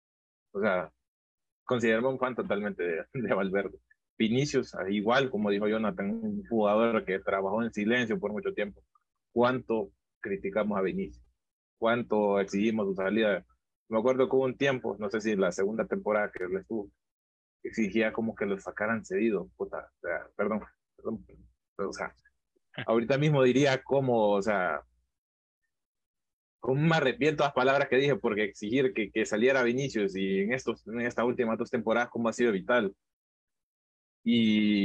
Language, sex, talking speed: English, male, 155 wpm